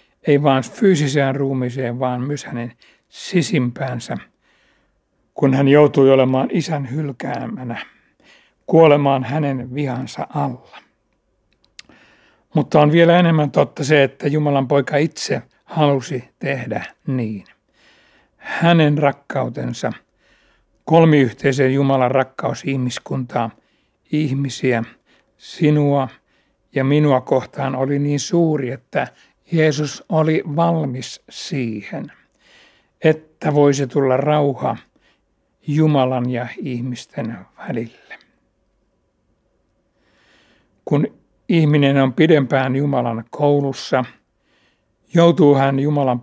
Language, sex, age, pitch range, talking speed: Finnish, male, 60-79, 130-150 Hz, 85 wpm